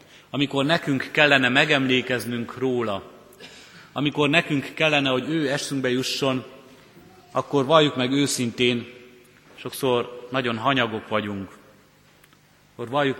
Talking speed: 100 wpm